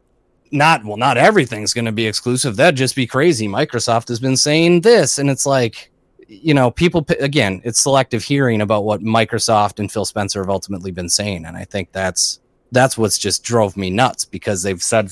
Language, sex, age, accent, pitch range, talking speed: English, male, 30-49, American, 110-140 Hz, 200 wpm